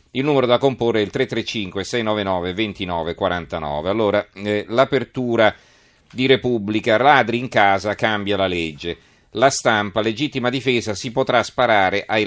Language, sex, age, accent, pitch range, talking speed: Italian, male, 40-59, native, 95-120 Hz, 135 wpm